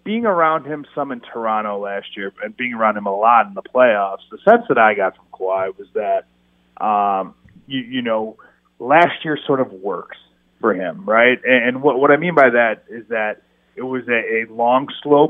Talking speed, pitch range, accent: 210 wpm, 105-130 Hz, American